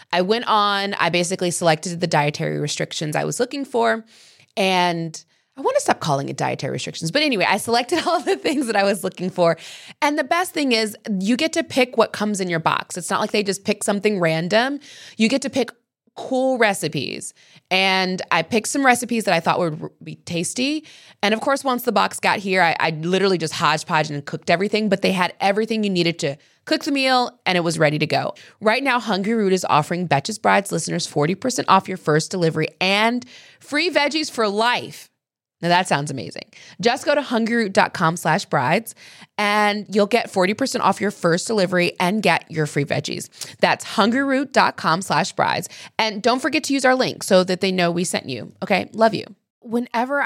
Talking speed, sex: 200 wpm, female